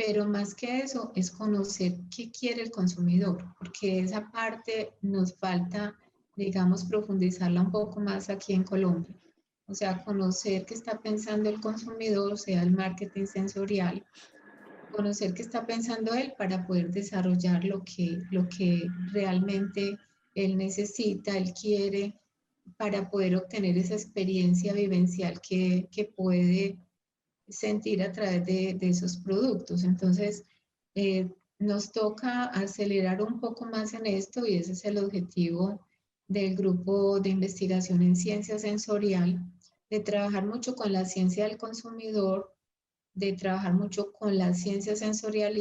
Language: Spanish